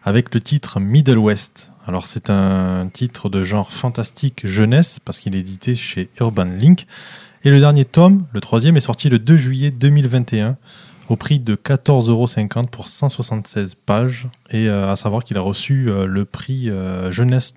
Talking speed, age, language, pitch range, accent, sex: 180 wpm, 20-39, French, 110-140 Hz, French, male